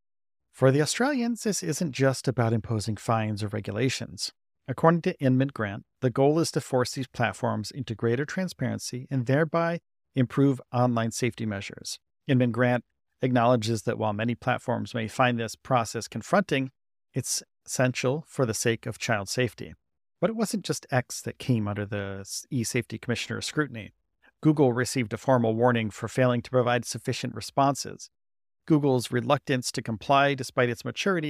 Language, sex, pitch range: English, male, 115-140 Hz